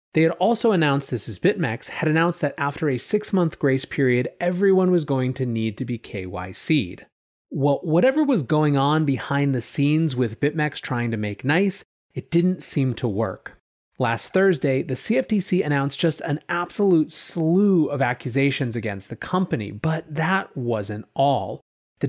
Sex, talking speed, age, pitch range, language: male, 165 wpm, 30-49, 125-175 Hz, English